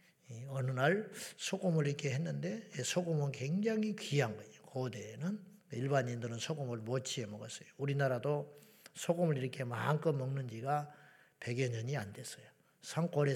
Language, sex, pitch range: Korean, male, 125-160 Hz